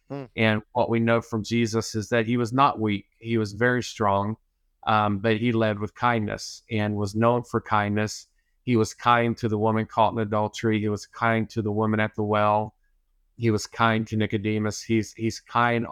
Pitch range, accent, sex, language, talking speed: 105-115 Hz, American, male, English, 200 wpm